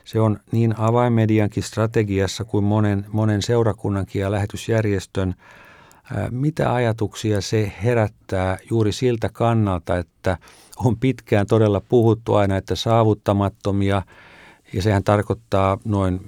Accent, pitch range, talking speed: native, 95-115 Hz, 110 wpm